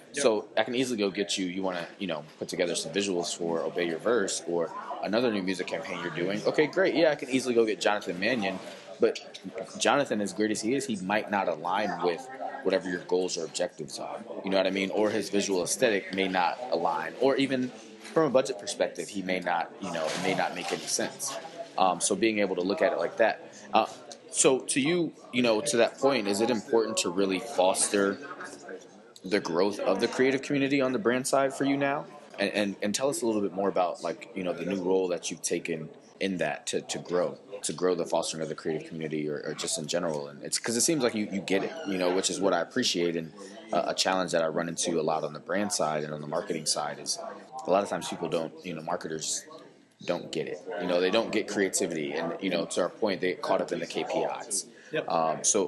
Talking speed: 245 wpm